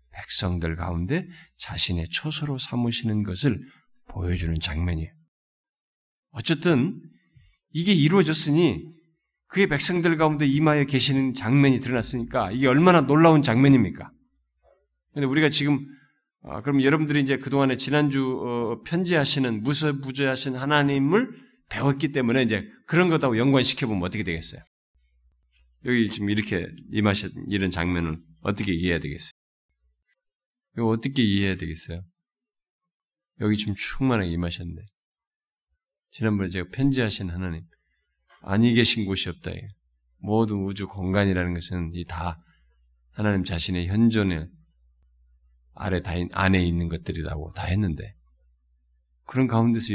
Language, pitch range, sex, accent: Korean, 85-135 Hz, male, native